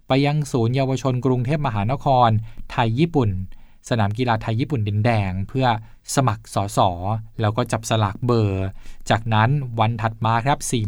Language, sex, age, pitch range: Thai, male, 20-39, 110-135 Hz